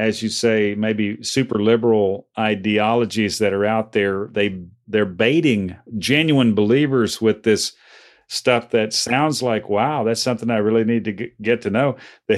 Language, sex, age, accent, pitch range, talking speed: English, male, 50-69, American, 105-120 Hz, 160 wpm